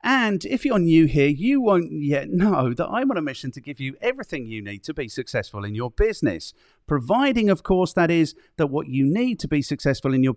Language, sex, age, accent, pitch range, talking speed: English, male, 40-59, British, 130-195 Hz, 230 wpm